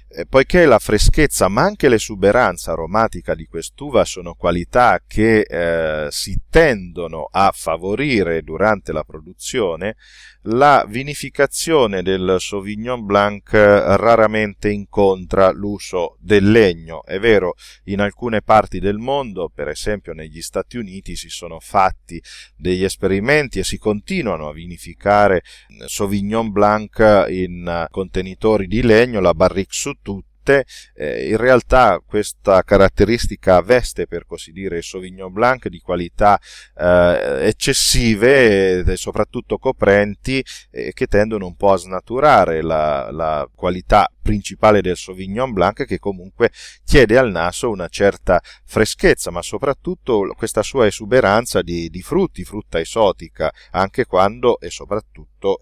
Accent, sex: native, male